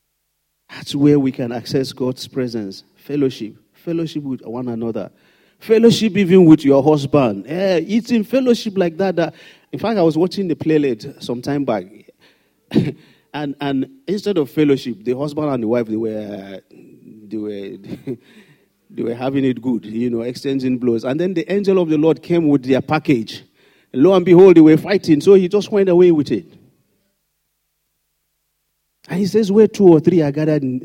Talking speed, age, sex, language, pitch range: 175 wpm, 40-59, male, English, 120-170 Hz